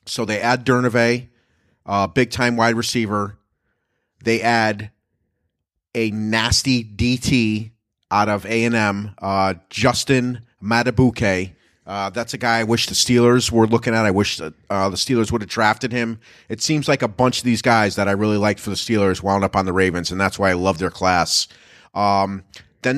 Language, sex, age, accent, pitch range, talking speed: English, male, 30-49, American, 100-125 Hz, 185 wpm